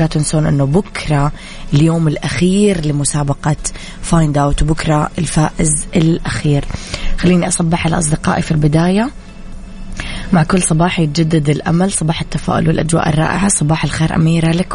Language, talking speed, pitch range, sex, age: Arabic, 120 wpm, 155-180 Hz, female, 20-39